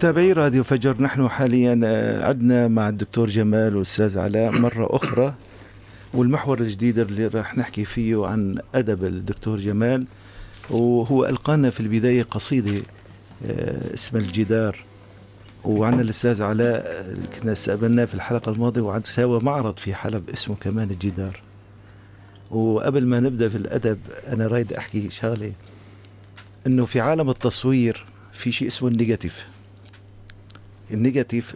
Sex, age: male, 50-69